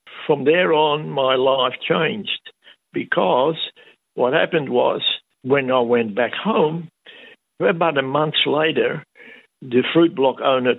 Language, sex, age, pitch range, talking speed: Dutch, male, 60-79, 125-155 Hz, 130 wpm